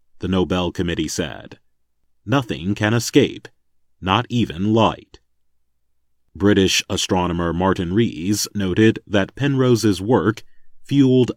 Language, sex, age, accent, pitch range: Chinese, male, 40-59, American, 90-120 Hz